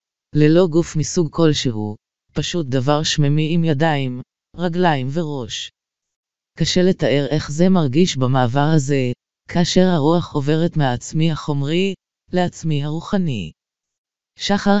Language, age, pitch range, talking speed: Hebrew, 20-39, 145-175 Hz, 105 wpm